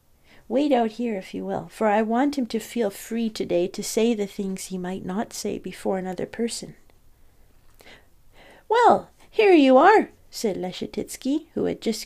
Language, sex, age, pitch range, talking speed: English, female, 40-59, 200-270 Hz, 170 wpm